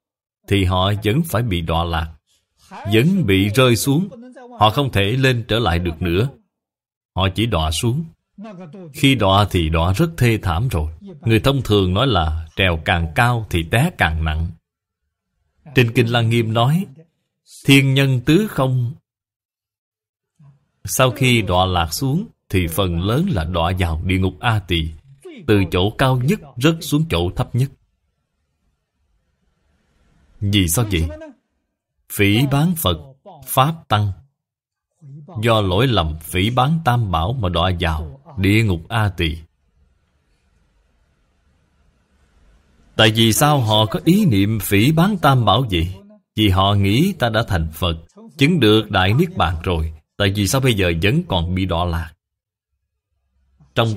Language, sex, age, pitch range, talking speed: Vietnamese, male, 20-39, 85-130 Hz, 150 wpm